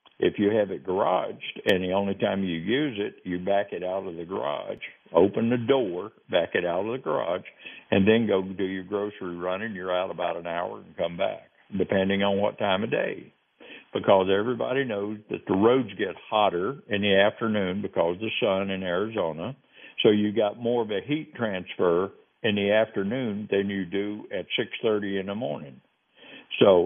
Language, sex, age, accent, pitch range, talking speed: English, male, 60-79, American, 95-120 Hz, 195 wpm